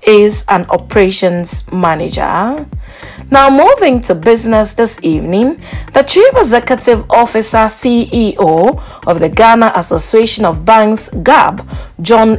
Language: English